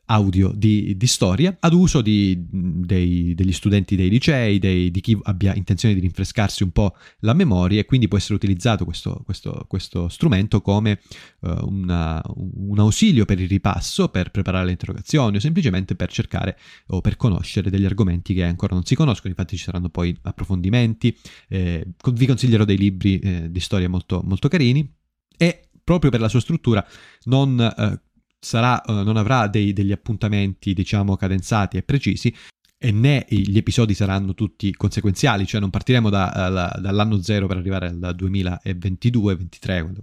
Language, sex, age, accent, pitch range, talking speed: Italian, male, 30-49, native, 95-115 Hz, 165 wpm